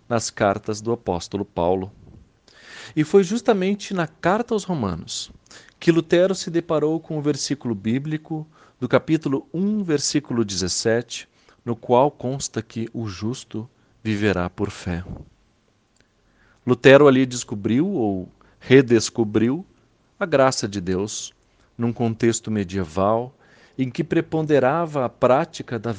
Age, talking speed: 40-59, 120 wpm